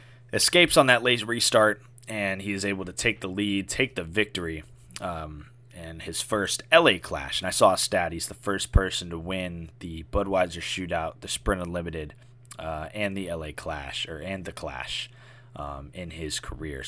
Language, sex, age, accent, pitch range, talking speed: English, male, 20-39, American, 80-100 Hz, 180 wpm